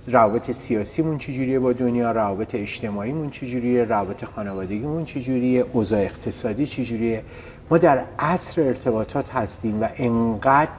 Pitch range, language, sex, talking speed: 110-135 Hz, Persian, male, 120 wpm